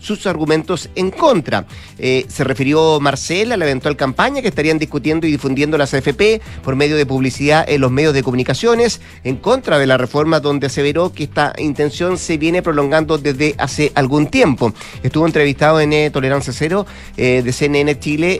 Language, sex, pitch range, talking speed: Spanish, male, 140-175 Hz, 175 wpm